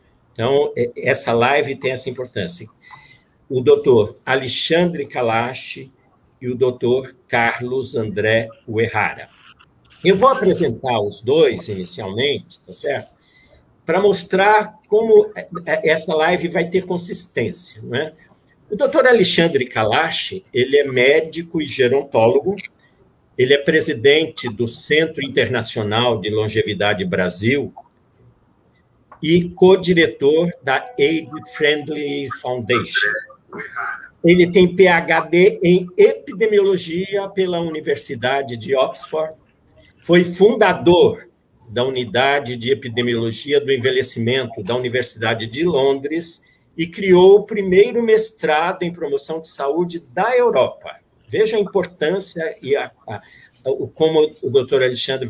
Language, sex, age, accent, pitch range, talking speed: Portuguese, male, 50-69, Brazilian, 125-200 Hz, 105 wpm